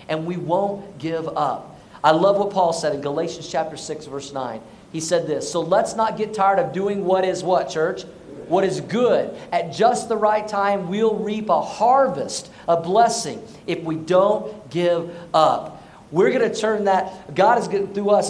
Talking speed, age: 195 wpm, 50-69